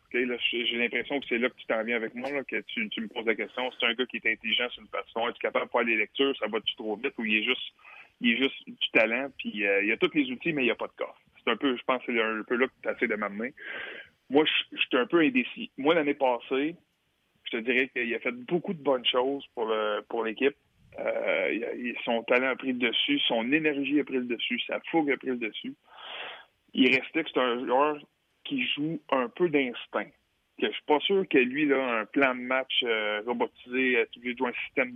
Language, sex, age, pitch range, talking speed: French, male, 20-39, 120-150 Hz, 255 wpm